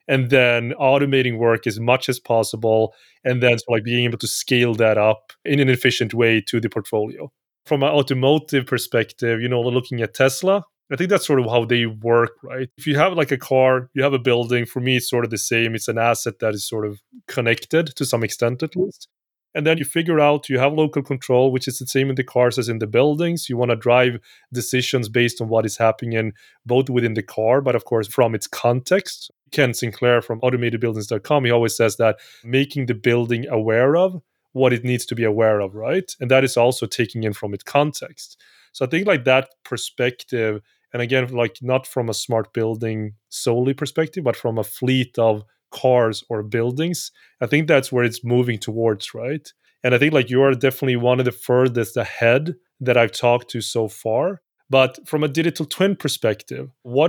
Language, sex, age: English, male, 30-49